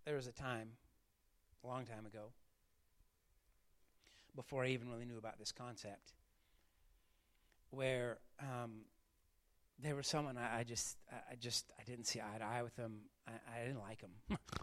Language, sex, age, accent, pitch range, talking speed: English, male, 40-59, American, 105-130 Hz, 165 wpm